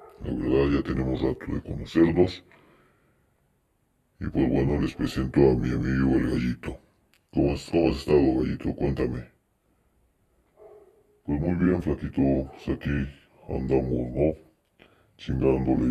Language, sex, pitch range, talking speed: Spanish, female, 65-80 Hz, 125 wpm